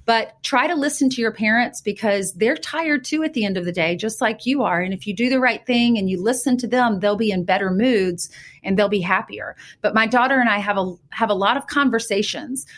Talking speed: 255 wpm